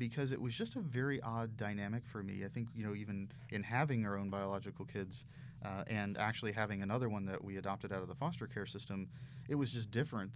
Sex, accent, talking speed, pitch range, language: male, American, 230 wpm, 105-130 Hz, English